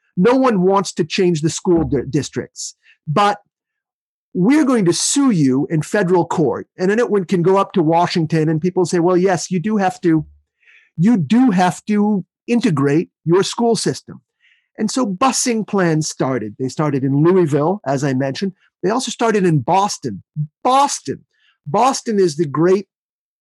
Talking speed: 165 wpm